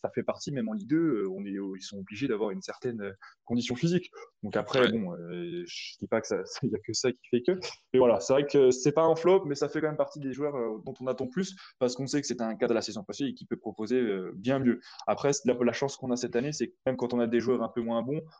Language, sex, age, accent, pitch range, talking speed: French, male, 20-39, French, 110-145 Hz, 295 wpm